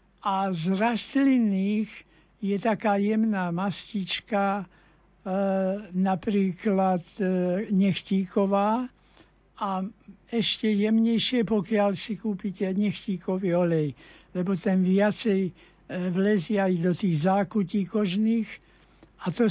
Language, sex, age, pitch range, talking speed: Slovak, male, 60-79, 180-215 Hz, 85 wpm